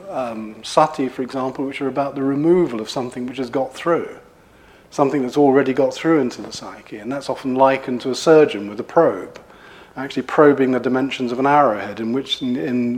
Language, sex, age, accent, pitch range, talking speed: English, male, 40-59, British, 125-150 Hz, 205 wpm